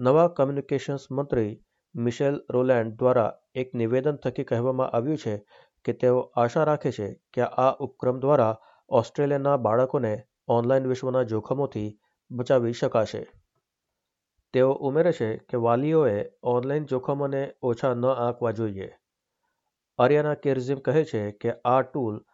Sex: male